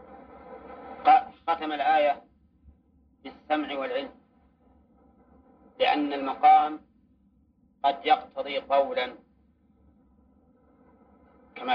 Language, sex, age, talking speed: Arabic, male, 40-59, 50 wpm